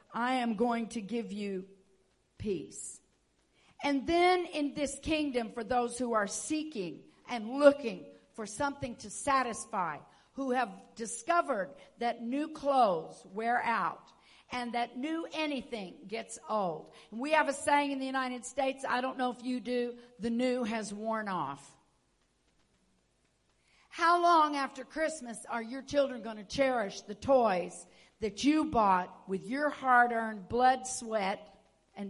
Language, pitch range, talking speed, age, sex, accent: English, 215-275 Hz, 145 wpm, 50-69, female, American